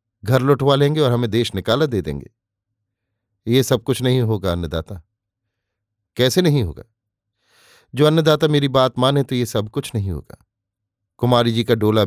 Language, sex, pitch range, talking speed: Hindi, male, 110-135 Hz, 165 wpm